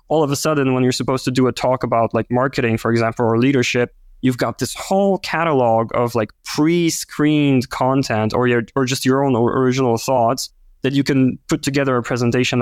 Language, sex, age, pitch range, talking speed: English, male, 20-39, 120-140 Hz, 200 wpm